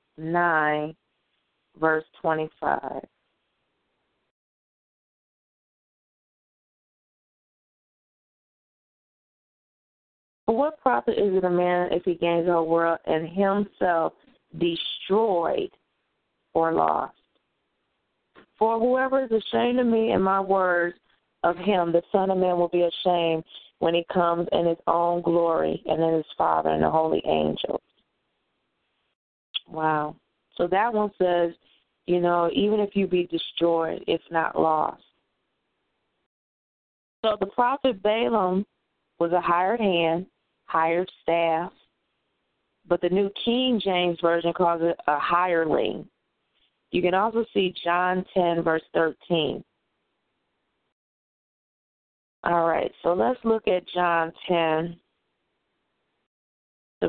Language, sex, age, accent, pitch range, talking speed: English, female, 30-49, American, 165-190 Hz, 110 wpm